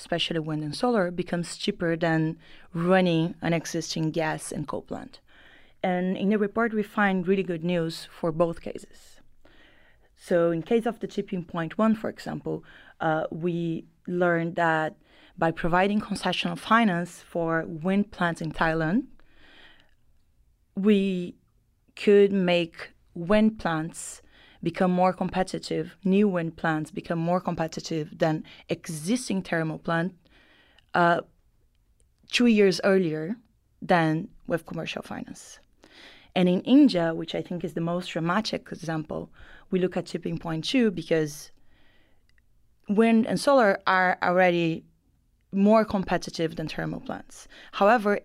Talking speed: 130 wpm